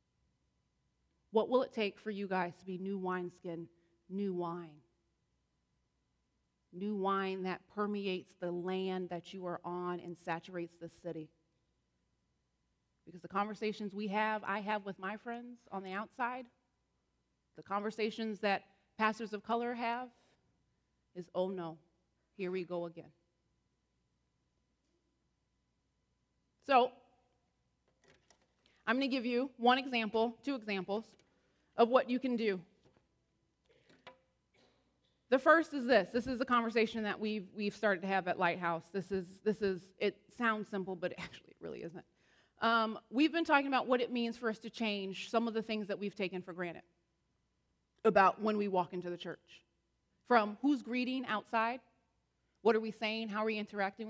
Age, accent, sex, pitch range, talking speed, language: 30-49, American, female, 180-225 Hz, 150 wpm, English